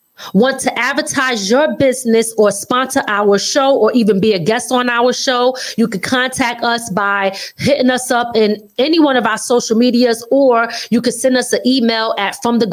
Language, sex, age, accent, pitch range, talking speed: English, female, 20-39, American, 200-250 Hz, 200 wpm